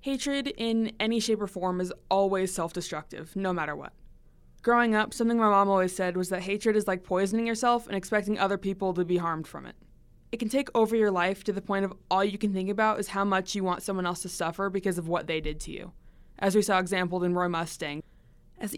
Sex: female